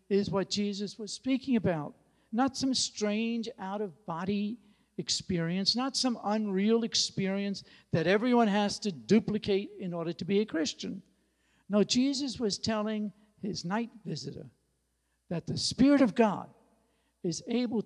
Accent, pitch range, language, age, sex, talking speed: American, 145-205 Hz, English, 60-79, male, 135 wpm